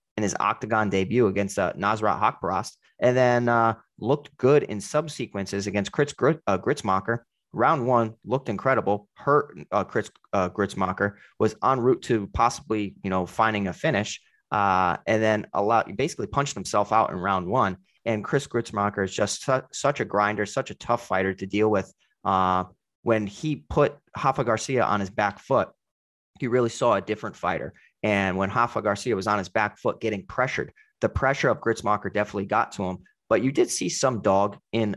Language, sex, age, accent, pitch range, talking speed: English, male, 30-49, American, 100-115 Hz, 185 wpm